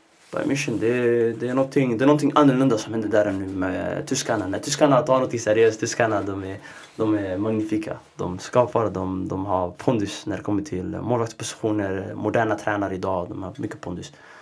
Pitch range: 100-130 Hz